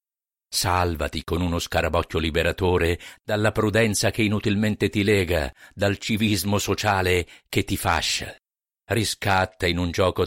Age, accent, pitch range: 50-69, native, 80-100 Hz